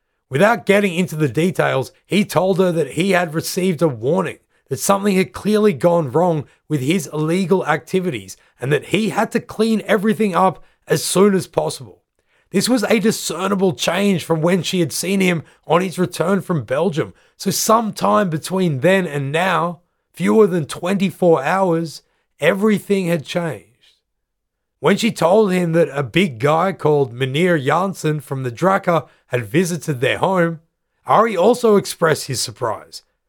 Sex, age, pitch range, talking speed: male, 30-49, 160-200 Hz, 160 wpm